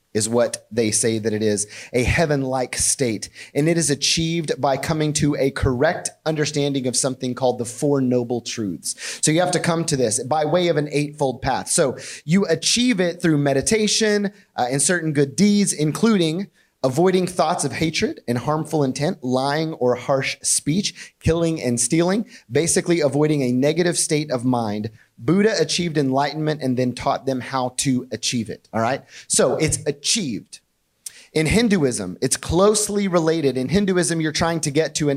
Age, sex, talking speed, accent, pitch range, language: 30-49, male, 170 wpm, American, 130-170 Hz, English